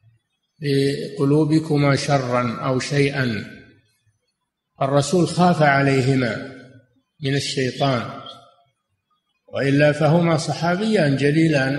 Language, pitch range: Arabic, 135-165 Hz